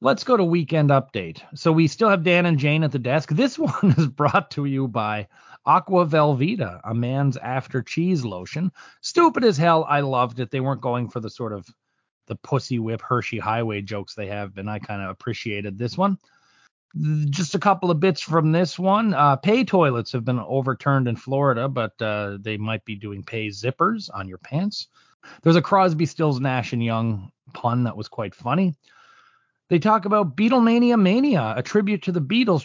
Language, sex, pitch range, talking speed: English, male, 115-175 Hz, 195 wpm